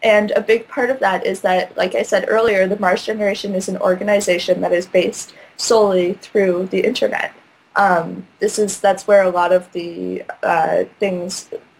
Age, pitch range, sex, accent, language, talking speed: 10-29, 180-210 Hz, female, American, English, 185 wpm